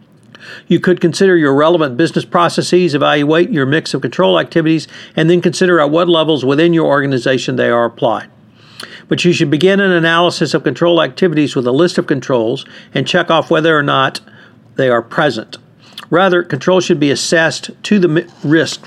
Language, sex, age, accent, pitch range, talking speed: English, male, 60-79, American, 135-175 Hz, 180 wpm